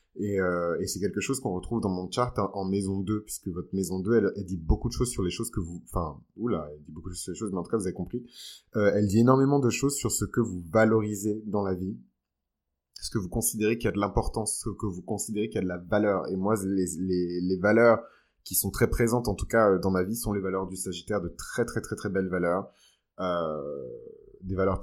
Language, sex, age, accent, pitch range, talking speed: French, male, 20-39, French, 95-115 Hz, 265 wpm